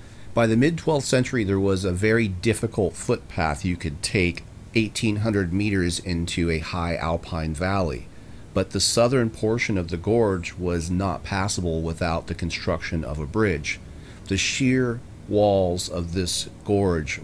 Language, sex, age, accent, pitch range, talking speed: English, male, 40-59, American, 80-100 Hz, 150 wpm